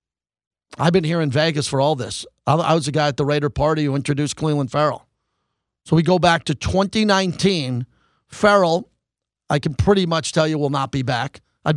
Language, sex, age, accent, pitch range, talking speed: English, male, 40-59, American, 155-195 Hz, 195 wpm